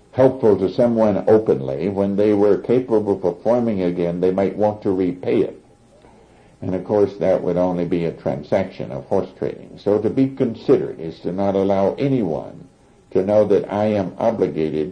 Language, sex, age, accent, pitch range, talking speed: English, male, 60-79, American, 85-105 Hz, 175 wpm